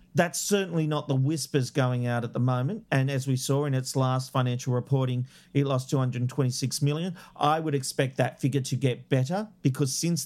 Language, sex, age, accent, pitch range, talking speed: English, male, 40-59, Australian, 130-170 Hz, 185 wpm